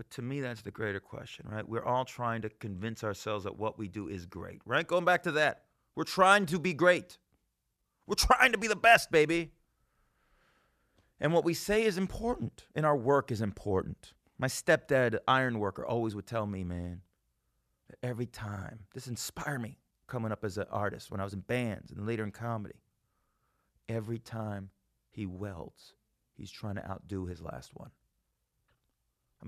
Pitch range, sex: 100-135 Hz, male